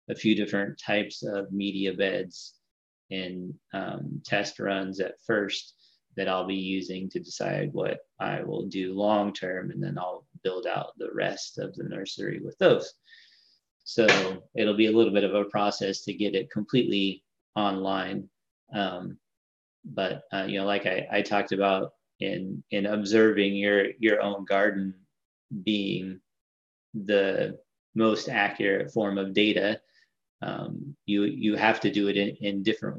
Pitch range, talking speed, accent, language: 100-110 Hz, 155 wpm, American, English